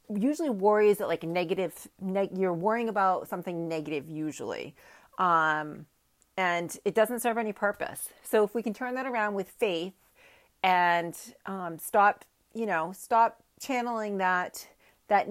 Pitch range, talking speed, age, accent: 180-230 Hz, 145 wpm, 40-59, American